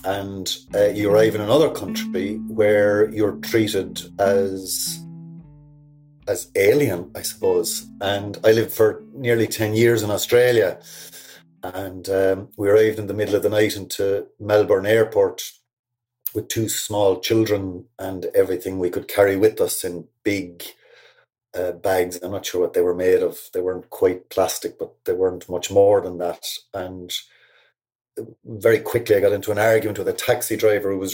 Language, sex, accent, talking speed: English, male, Irish, 165 wpm